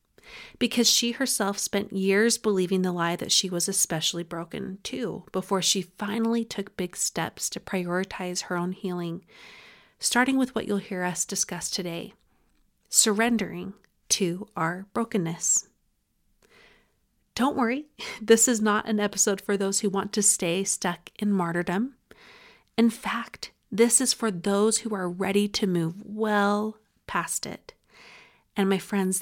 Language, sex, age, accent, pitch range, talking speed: English, female, 30-49, American, 180-215 Hz, 145 wpm